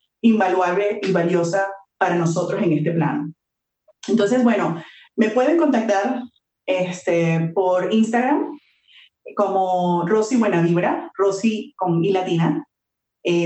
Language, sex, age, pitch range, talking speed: Spanish, female, 30-49, 180-225 Hz, 105 wpm